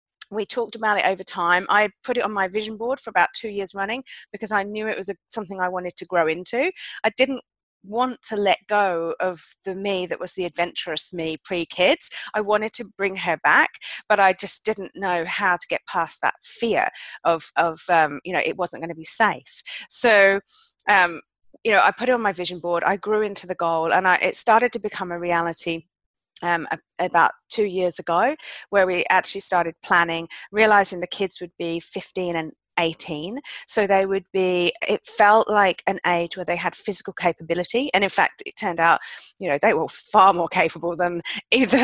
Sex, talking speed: female, 205 wpm